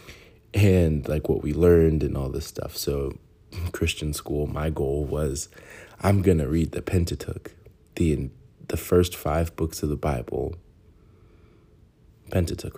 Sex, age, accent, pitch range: male, 20-39, American, 75-90 Hz